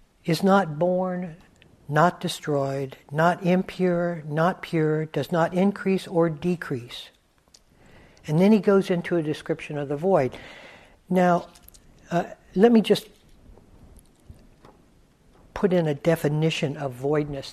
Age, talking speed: 60-79, 120 wpm